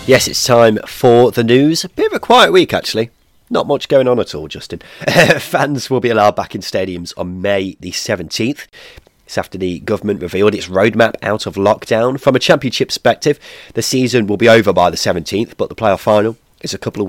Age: 30-49